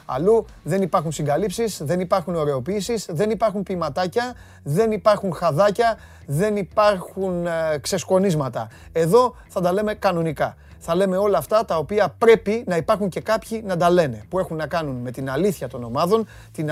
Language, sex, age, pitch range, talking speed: Greek, male, 30-49, 150-205 Hz, 165 wpm